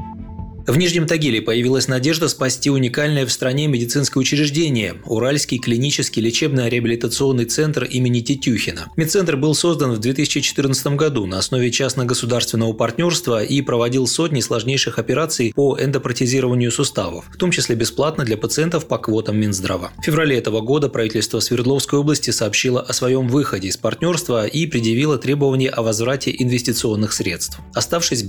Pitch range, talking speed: 115-140 Hz, 140 wpm